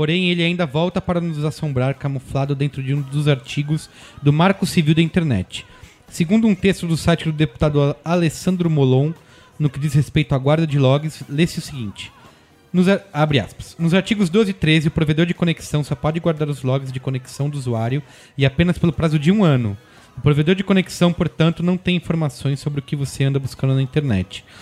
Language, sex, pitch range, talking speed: Portuguese, male, 130-160 Hz, 200 wpm